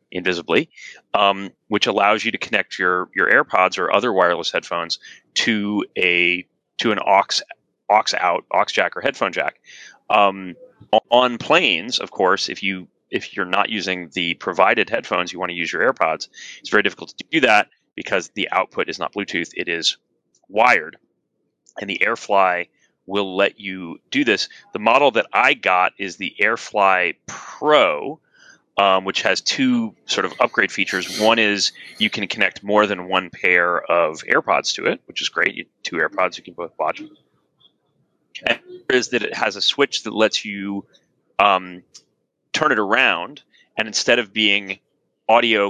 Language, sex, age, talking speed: English, male, 30-49, 170 wpm